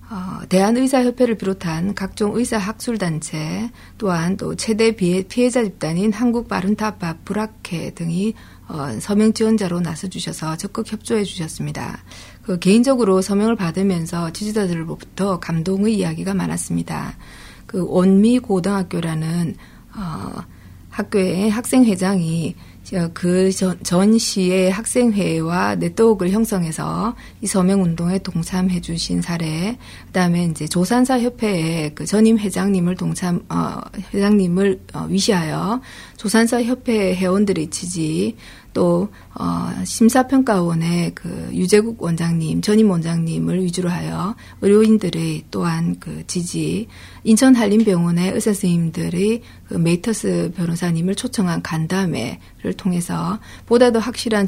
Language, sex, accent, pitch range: Korean, female, native, 170-215 Hz